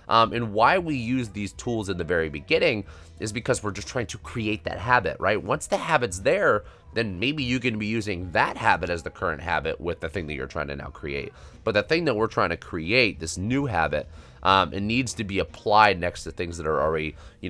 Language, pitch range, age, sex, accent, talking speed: English, 80-110 Hz, 30-49, male, American, 240 wpm